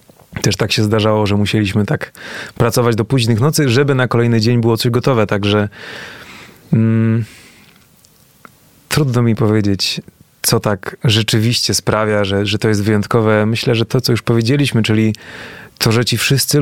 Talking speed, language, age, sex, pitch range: 155 wpm, Polish, 30-49, male, 105-125 Hz